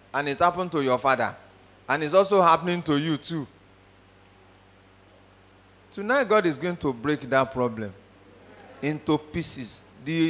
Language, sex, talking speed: English, male, 140 wpm